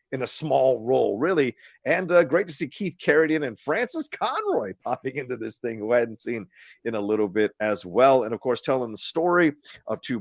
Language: English